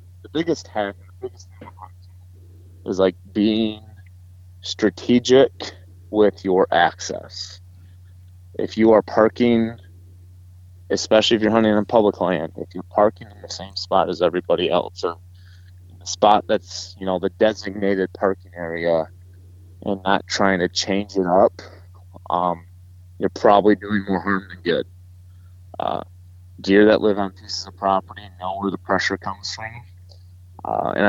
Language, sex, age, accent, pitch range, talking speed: English, male, 20-39, American, 90-100 Hz, 145 wpm